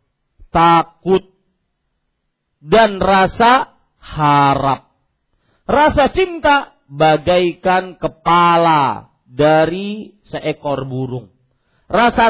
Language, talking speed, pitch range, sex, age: Malay, 60 wpm, 165-270 Hz, male, 40-59